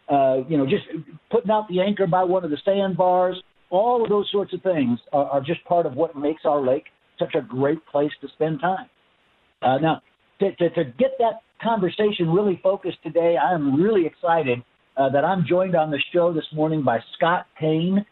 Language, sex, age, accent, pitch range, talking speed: English, male, 60-79, American, 155-185 Hz, 205 wpm